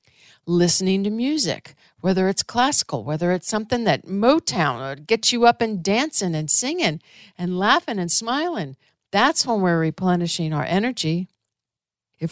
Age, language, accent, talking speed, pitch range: 50-69, English, American, 145 wpm, 155-200 Hz